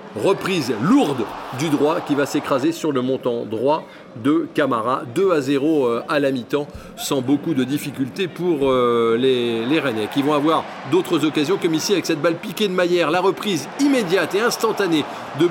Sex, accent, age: male, French, 40-59